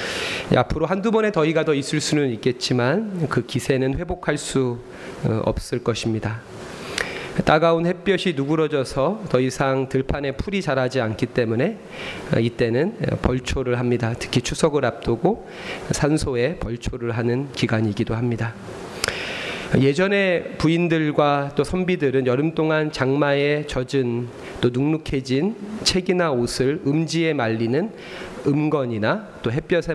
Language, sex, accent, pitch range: Korean, male, native, 125-160 Hz